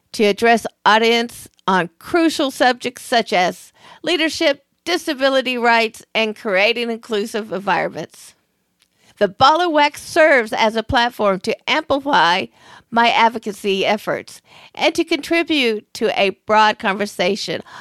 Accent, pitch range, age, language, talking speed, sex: American, 205-275 Hz, 50-69, English, 115 wpm, female